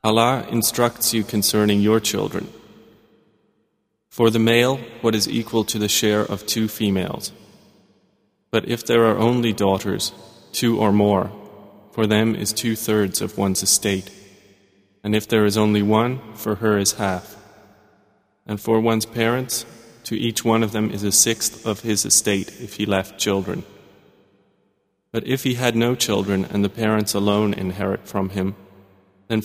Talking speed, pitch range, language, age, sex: 155 wpm, 100-115 Hz, Arabic, 30-49, male